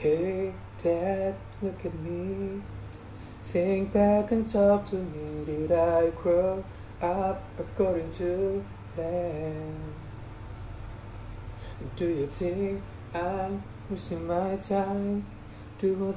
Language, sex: English, male